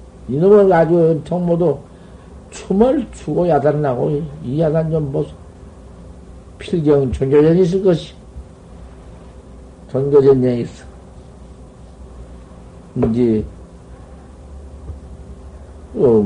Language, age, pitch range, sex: Korean, 60-79, 90-135 Hz, male